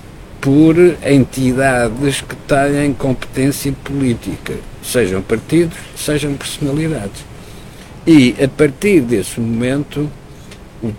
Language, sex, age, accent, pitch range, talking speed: Portuguese, male, 60-79, Portuguese, 115-145 Hz, 85 wpm